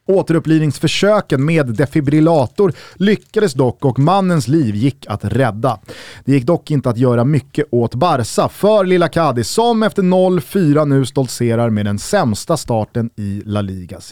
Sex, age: male, 30-49